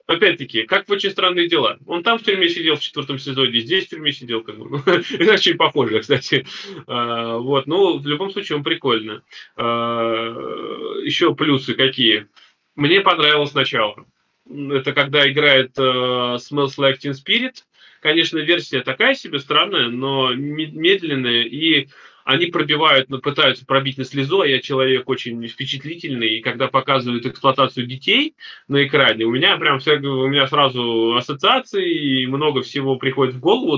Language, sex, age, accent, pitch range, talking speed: Russian, male, 20-39, native, 125-155 Hz, 145 wpm